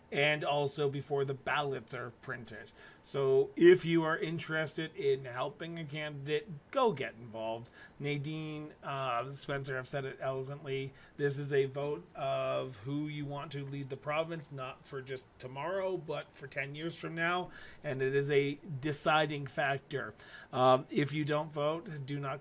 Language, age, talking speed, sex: English, 30-49, 165 wpm, male